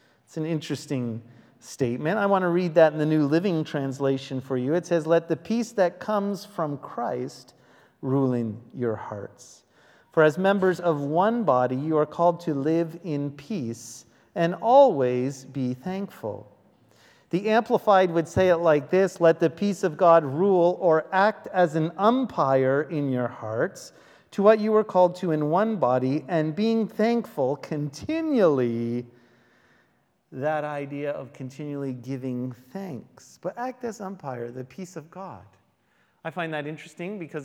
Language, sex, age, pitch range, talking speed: English, male, 40-59, 140-200 Hz, 160 wpm